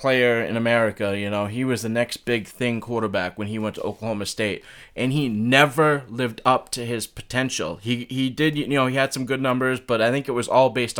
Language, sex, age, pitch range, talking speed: English, male, 20-39, 115-135 Hz, 235 wpm